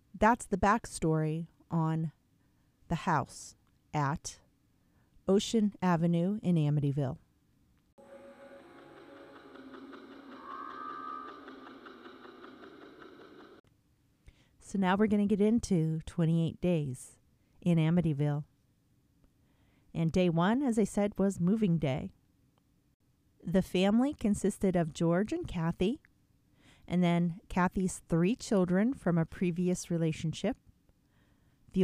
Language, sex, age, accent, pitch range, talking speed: English, female, 40-59, American, 170-220 Hz, 90 wpm